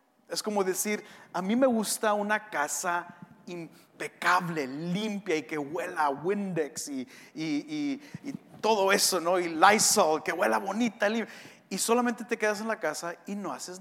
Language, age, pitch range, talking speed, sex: English, 40-59, 180-250 Hz, 165 wpm, male